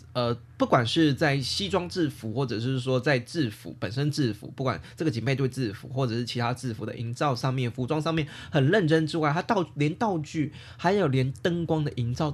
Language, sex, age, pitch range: Chinese, male, 20-39, 120-160 Hz